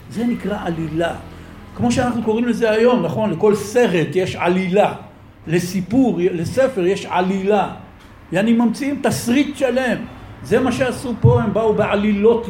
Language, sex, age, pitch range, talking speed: Hebrew, male, 60-79, 165-250 Hz, 140 wpm